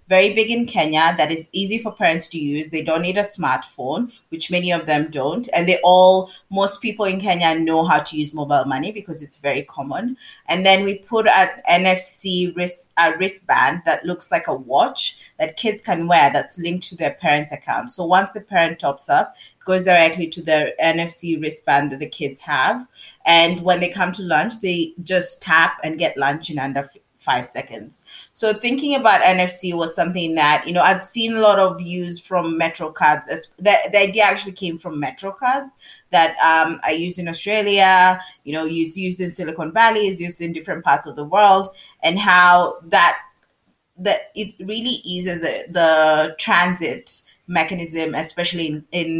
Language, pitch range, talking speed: English, 160-195 Hz, 190 wpm